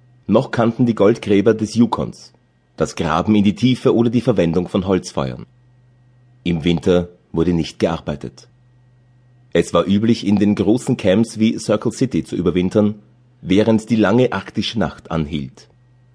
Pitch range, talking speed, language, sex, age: 100-125 Hz, 145 wpm, German, male, 30-49